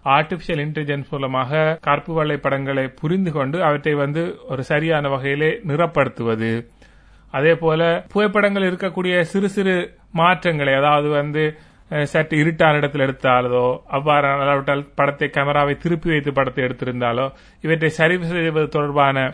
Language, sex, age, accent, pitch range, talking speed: Tamil, male, 30-49, native, 135-170 Hz, 110 wpm